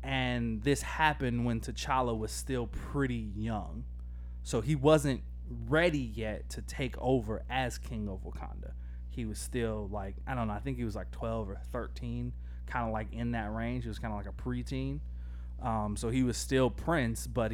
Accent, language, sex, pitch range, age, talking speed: American, English, male, 80-125 Hz, 20-39, 190 wpm